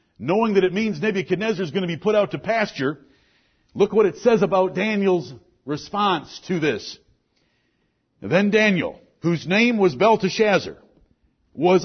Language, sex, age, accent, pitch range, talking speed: English, male, 60-79, American, 150-220 Hz, 145 wpm